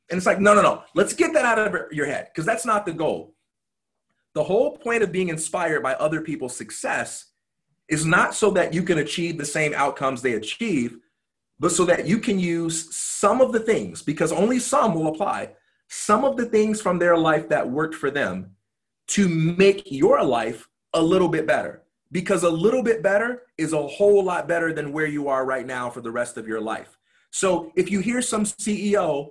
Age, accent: 30-49, American